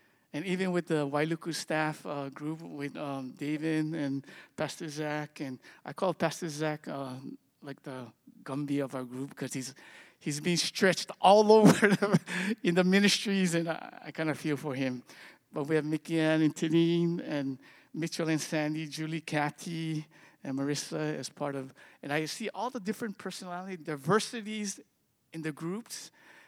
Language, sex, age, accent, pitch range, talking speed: English, male, 50-69, American, 145-170 Hz, 165 wpm